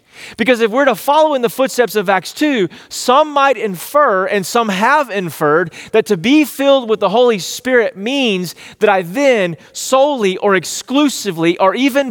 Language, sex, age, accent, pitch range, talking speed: English, male, 30-49, American, 165-230 Hz, 175 wpm